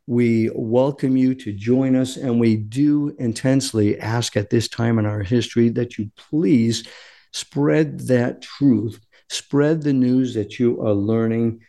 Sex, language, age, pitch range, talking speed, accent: male, English, 50-69, 115-145 Hz, 155 wpm, American